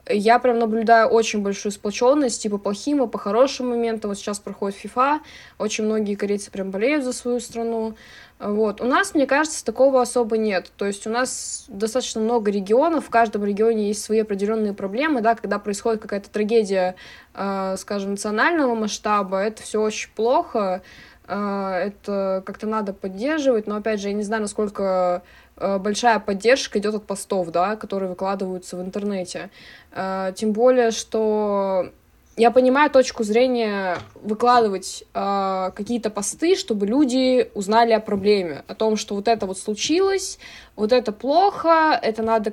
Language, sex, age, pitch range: Russian, female, 20-39, 200-230 Hz